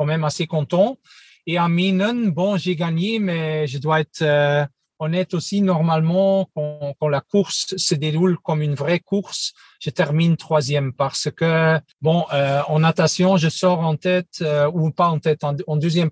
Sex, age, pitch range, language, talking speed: male, 40-59, 150-175 Hz, French, 180 wpm